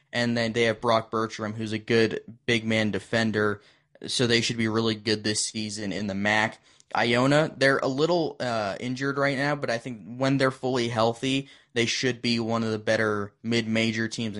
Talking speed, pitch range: 190 wpm, 105-115 Hz